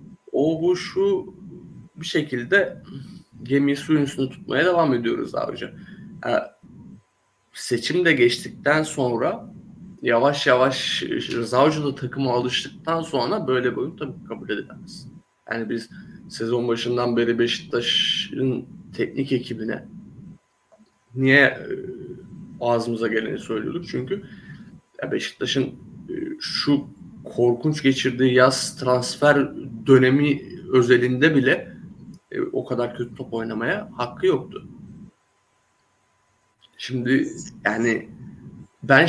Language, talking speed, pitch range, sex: Turkish, 95 wpm, 125-175 Hz, male